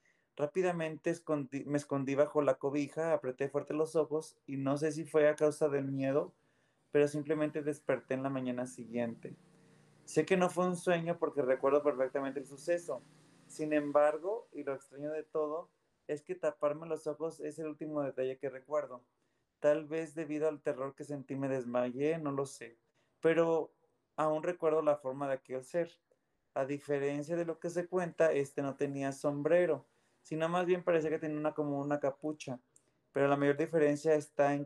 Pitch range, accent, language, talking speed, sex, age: 140-155 Hz, Mexican, Spanish, 180 wpm, male, 30-49